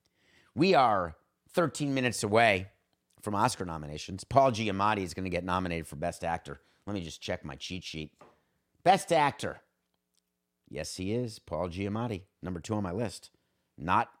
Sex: male